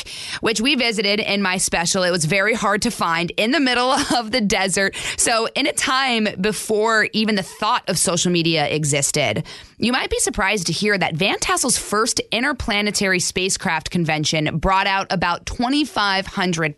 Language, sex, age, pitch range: English, female, 20-39, 175-230 Hz